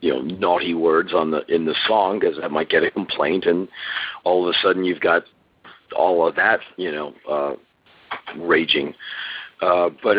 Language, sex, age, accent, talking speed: English, male, 50-69, American, 185 wpm